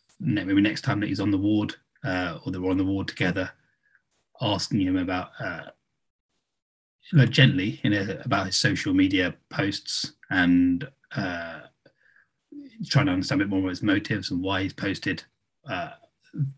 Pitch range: 100-135 Hz